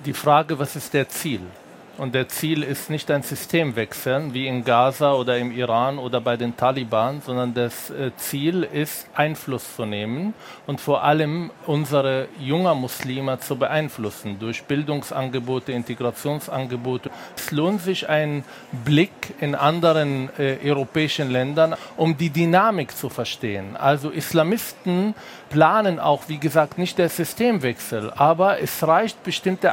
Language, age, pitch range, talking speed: German, 50-69, 135-175 Hz, 140 wpm